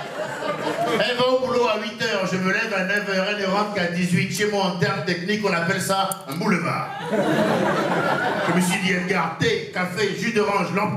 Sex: male